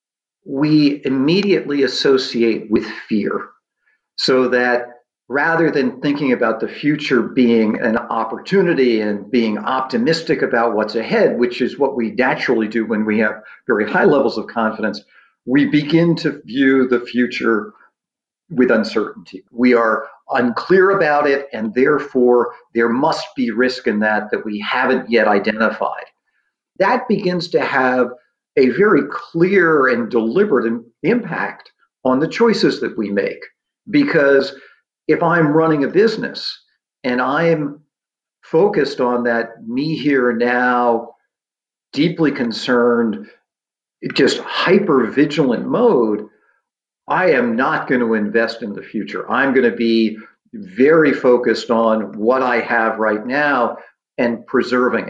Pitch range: 115-150 Hz